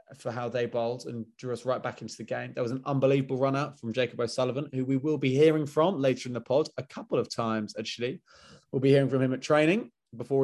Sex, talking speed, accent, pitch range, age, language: male, 255 wpm, British, 115-135 Hz, 20-39, English